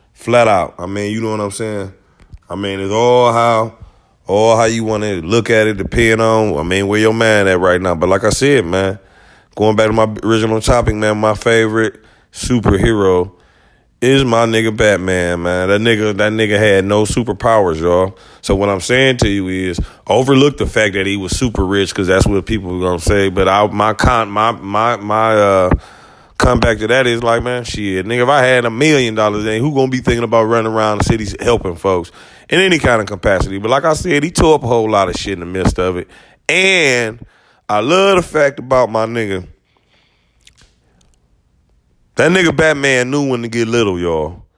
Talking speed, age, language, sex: 210 wpm, 30-49, English, male